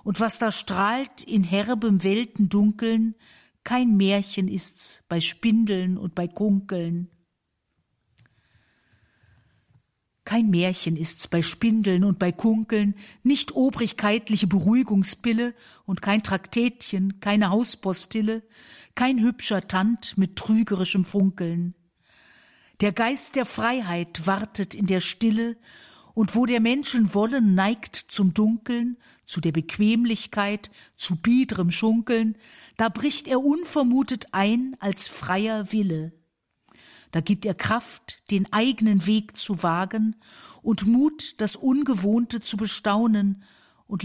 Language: German